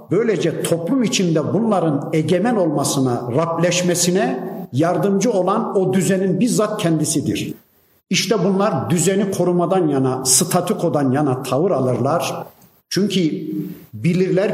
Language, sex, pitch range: Turkish, male, 160-195 Hz